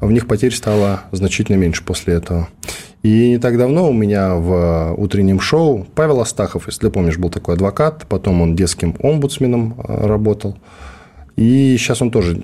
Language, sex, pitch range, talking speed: Russian, male, 90-115 Hz, 160 wpm